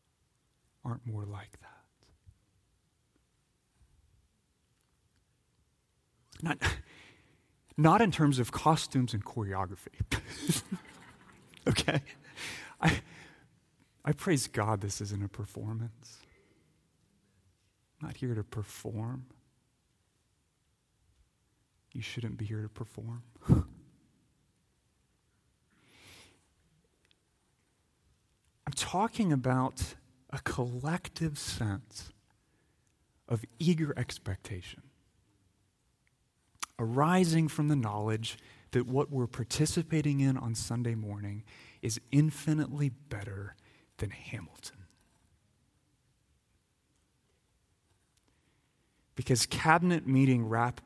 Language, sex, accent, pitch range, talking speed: English, male, American, 100-135 Hz, 75 wpm